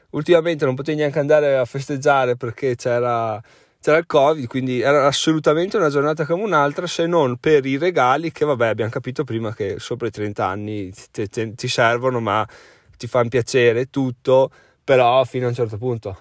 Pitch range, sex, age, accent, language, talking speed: 120-155 Hz, male, 30-49, native, Italian, 180 wpm